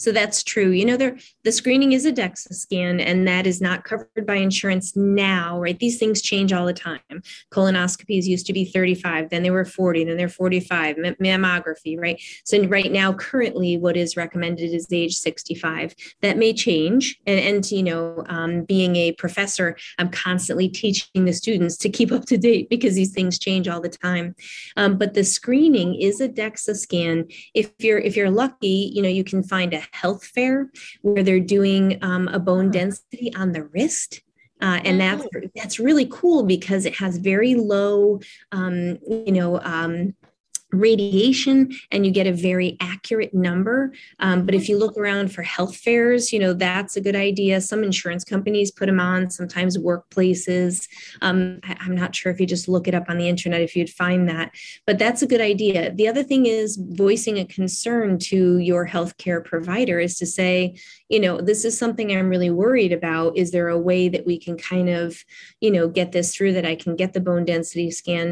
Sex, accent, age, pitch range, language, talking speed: female, American, 30-49, 175-210 Hz, English, 195 wpm